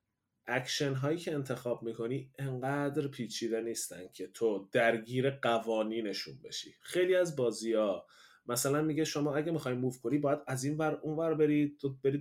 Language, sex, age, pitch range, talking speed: Persian, male, 30-49, 130-165 Hz, 165 wpm